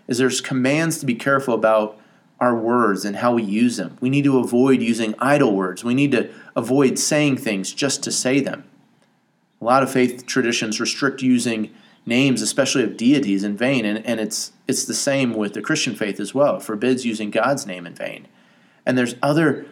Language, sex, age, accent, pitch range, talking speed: English, male, 30-49, American, 115-150 Hz, 200 wpm